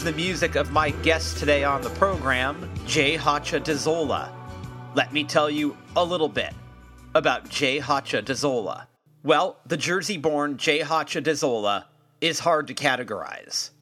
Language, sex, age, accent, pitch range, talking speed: English, male, 40-59, American, 130-160 Hz, 145 wpm